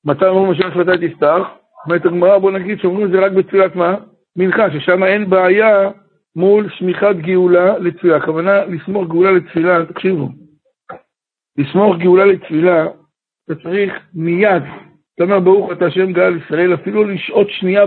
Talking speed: 150 wpm